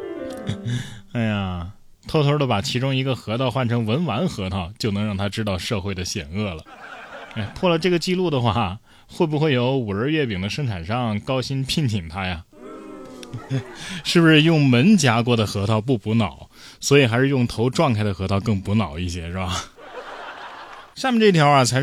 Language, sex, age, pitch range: Chinese, male, 20-39, 105-150 Hz